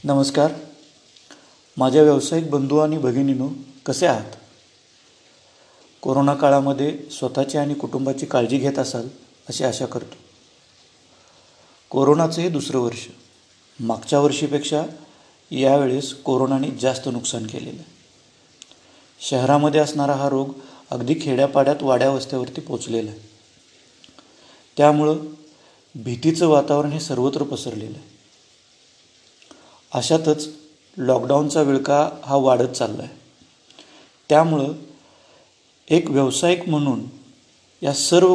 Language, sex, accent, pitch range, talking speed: Marathi, male, native, 130-155 Hz, 90 wpm